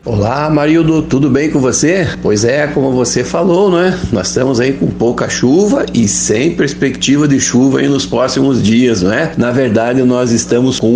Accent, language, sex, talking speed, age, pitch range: Brazilian, Portuguese, male, 190 wpm, 50-69, 110-135 Hz